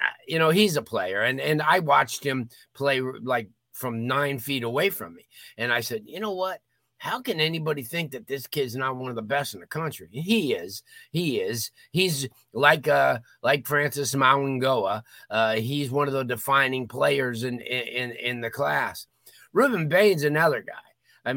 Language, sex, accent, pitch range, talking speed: English, male, American, 120-155 Hz, 185 wpm